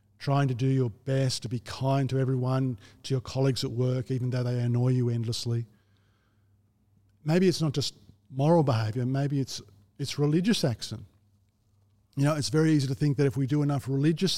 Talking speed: 190 wpm